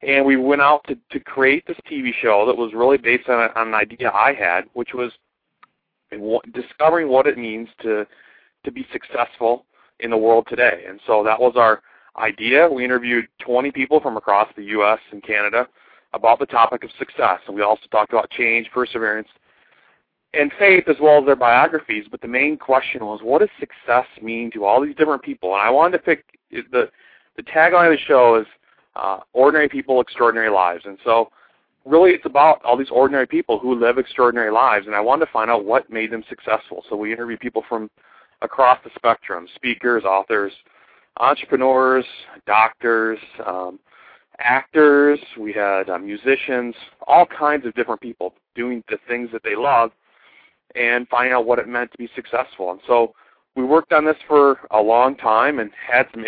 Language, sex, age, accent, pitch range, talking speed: English, male, 40-59, American, 110-140 Hz, 190 wpm